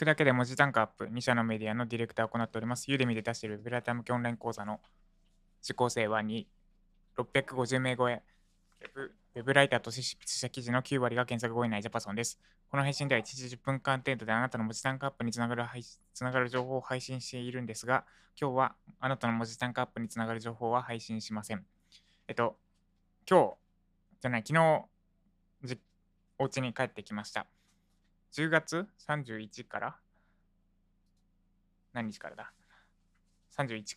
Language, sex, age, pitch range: Japanese, male, 20-39, 105-130 Hz